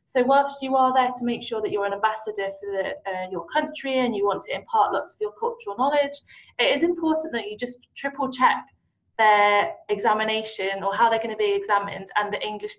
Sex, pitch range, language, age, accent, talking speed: female, 205-265 Hz, English, 20-39, British, 210 wpm